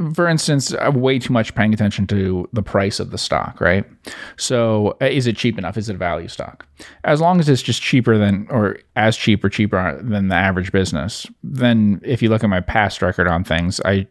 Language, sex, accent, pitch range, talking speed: English, male, American, 90-110 Hz, 220 wpm